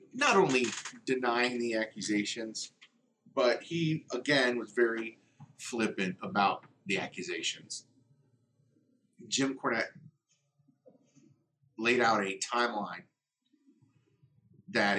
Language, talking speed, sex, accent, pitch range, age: English, 85 wpm, male, American, 105-140 Hz, 30-49